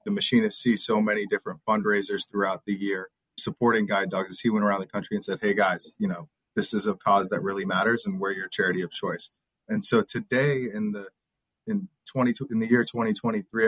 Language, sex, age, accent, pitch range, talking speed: English, male, 30-49, American, 100-125 Hz, 215 wpm